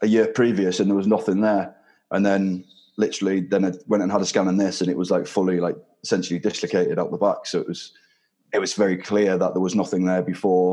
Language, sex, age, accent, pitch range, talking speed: English, male, 20-39, British, 90-100 Hz, 245 wpm